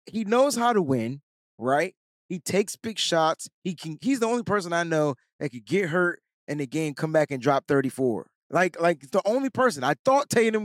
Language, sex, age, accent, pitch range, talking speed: English, male, 20-39, American, 130-185 Hz, 220 wpm